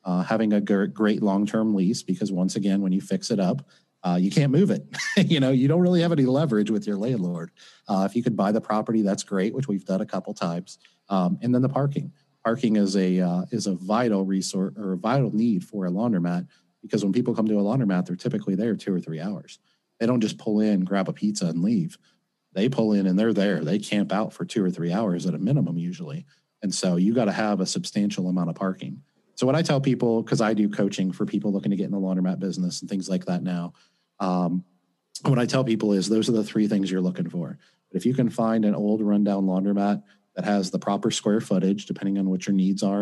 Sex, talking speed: male, 245 wpm